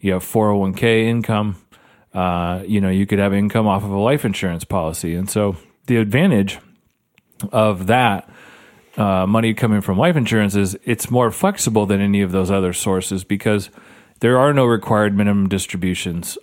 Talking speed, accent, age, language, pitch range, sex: 170 wpm, American, 30-49, English, 95-115 Hz, male